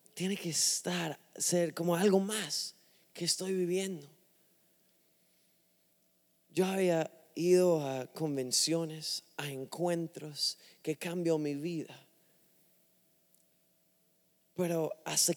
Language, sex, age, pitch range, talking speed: English, male, 30-49, 150-180 Hz, 90 wpm